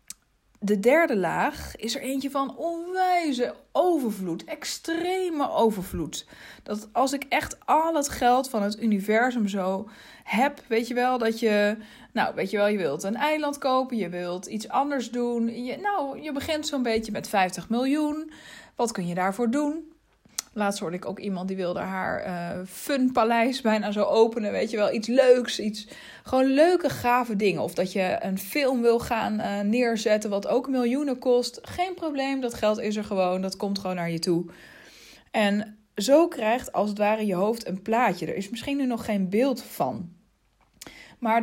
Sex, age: female, 20-39